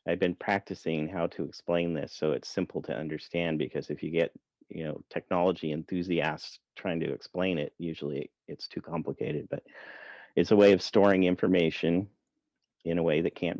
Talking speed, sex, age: 175 wpm, male, 40-59